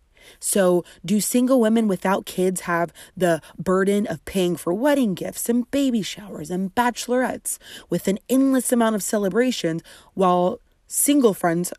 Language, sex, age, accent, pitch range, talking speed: English, female, 30-49, American, 180-235 Hz, 145 wpm